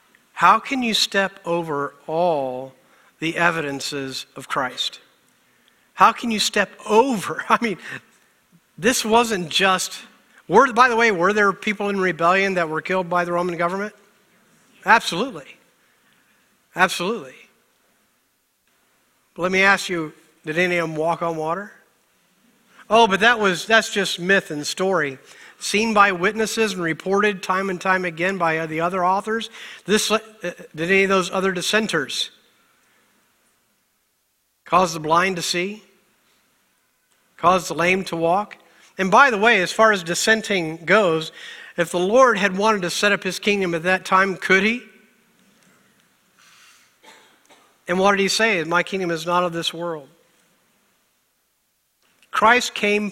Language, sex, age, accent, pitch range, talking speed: English, male, 50-69, American, 170-210 Hz, 145 wpm